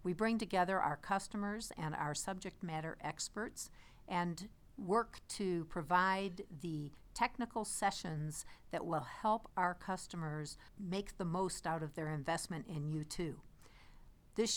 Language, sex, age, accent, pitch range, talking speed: English, female, 60-79, American, 160-195 Hz, 130 wpm